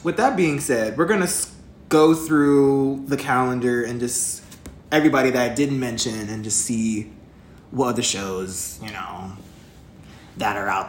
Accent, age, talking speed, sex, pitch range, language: American, 20-39, 160 wpm, male, 130-200 Hz, English